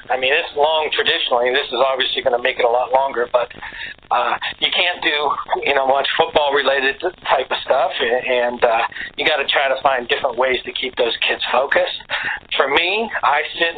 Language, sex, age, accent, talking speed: English, male, 50-69, American, 210 wpm